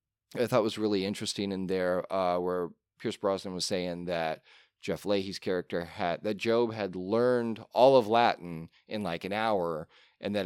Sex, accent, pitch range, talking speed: male, American, 95-125 Hz, 180 wpm